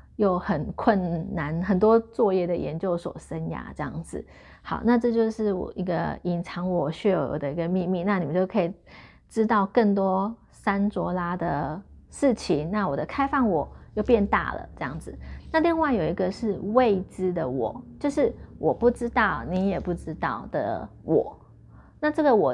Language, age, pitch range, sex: Chinese, 30-49, 175-225 Hz, female